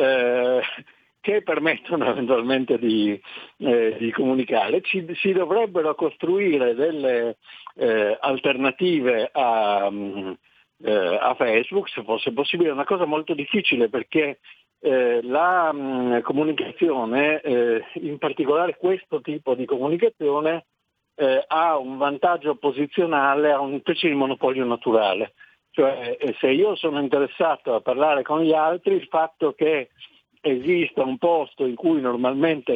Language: Italian